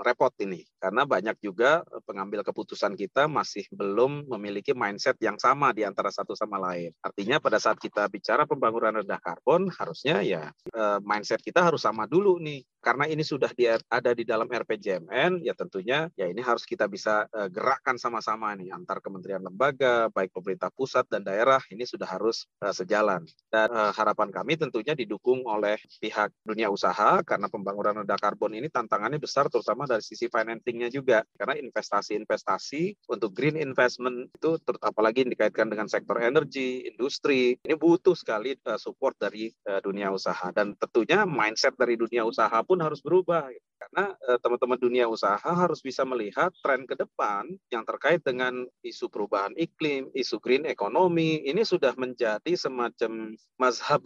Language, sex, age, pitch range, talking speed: Indonesian, male, 30-49, 105-140 Hz, 160 wpm